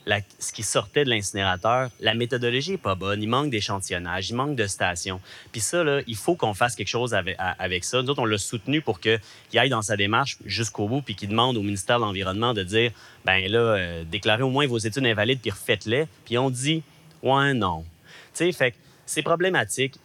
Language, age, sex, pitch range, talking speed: French, 30-49, male, 100-125 Hz, 220 wpm